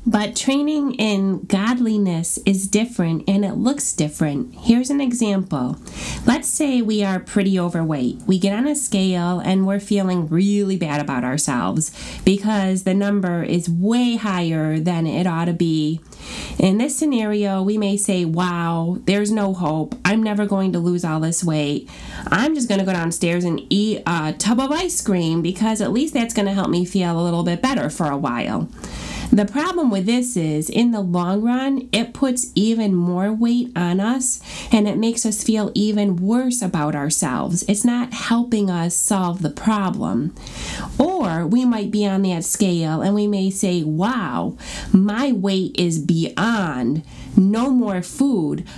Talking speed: 175 wpm